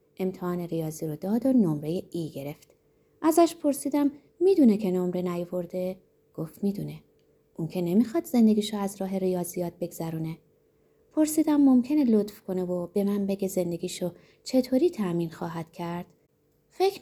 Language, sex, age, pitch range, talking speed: Persian, female, 20-39, 170-255 Hz, 135 wpm